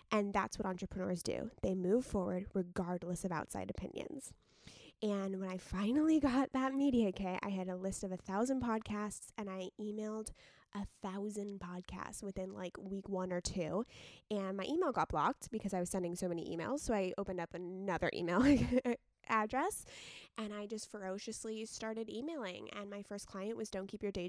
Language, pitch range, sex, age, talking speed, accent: English, 185-215 Hz, female, 20-39, 185 wpm, American